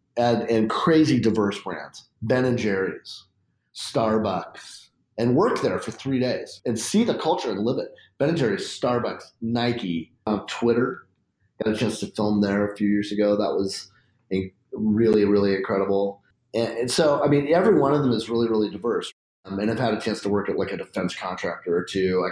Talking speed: 190 wpm